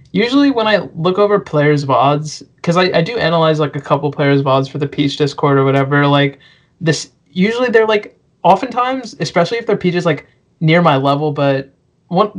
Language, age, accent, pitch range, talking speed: English, 20-39, American, 145-170 Hz, 190 wpm